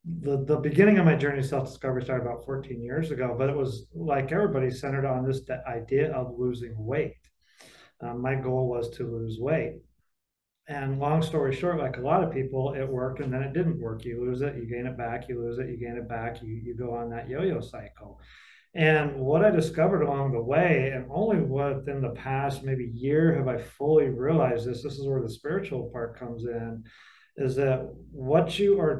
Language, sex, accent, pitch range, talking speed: English, male, American, 125-155 Hz, 210 wpm